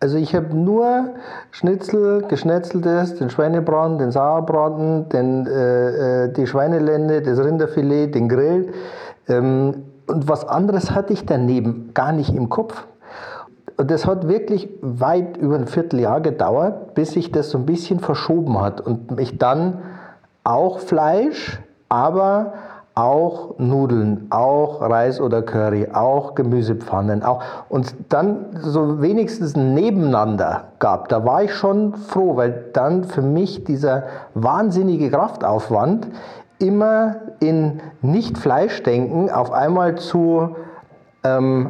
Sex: male